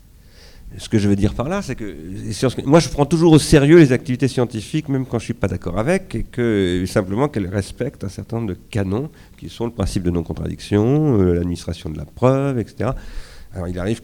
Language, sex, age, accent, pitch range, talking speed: French, male, 50-69, French, 85-120 Hz, 210 wpm